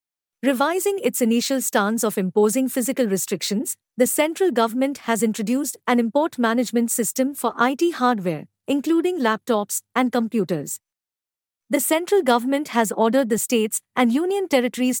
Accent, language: Indian, English